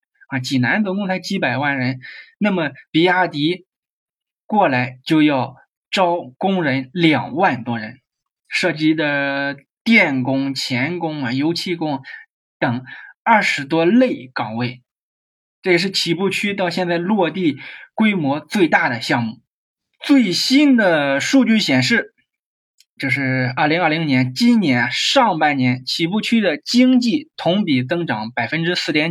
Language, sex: Chinese, male